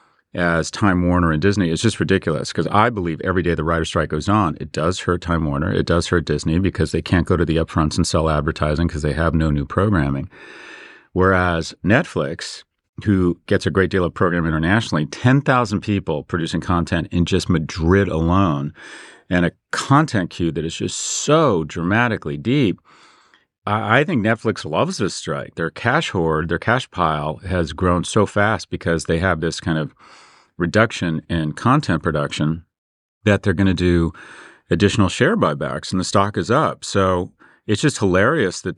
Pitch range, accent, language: 80-95 Hz, American, English